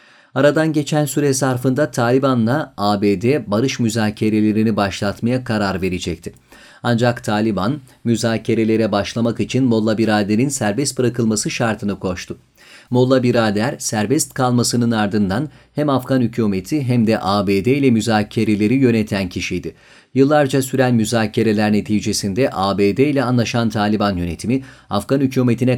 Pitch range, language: 105-130 Hz, Turkish